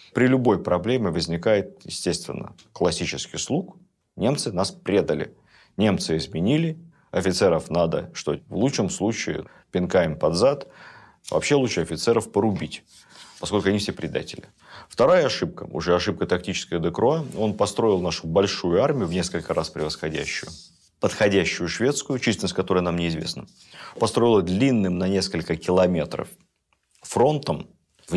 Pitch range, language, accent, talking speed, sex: 85-110 Hz, Russian, native, 120 wpm, male